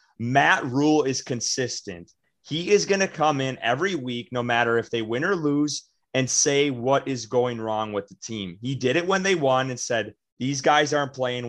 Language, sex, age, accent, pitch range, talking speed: English, male, 30-49, American, 120-145 Hz, 210 wpm